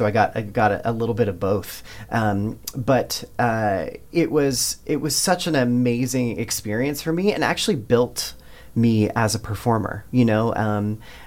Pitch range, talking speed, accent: 105-125 Hz, 180 wpm, American